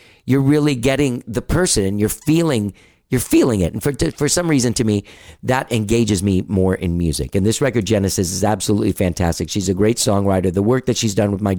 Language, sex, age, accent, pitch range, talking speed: English, male, 50-69, American, 100-130 Hz, 225 wpm